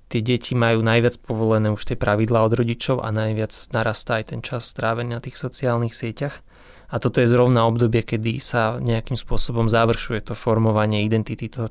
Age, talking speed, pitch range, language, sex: 20-39, 180 wpm, 115-125 Hz, Slovak, male